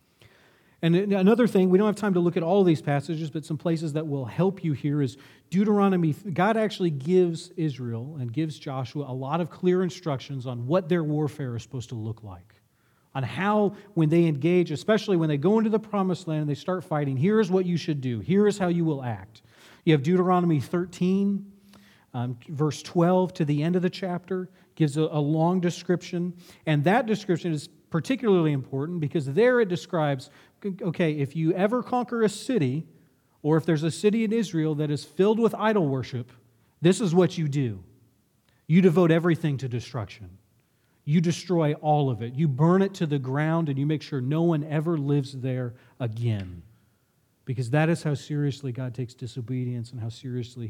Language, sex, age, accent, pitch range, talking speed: English, male, 40-59, American, 130-180 Hz, 195 wpm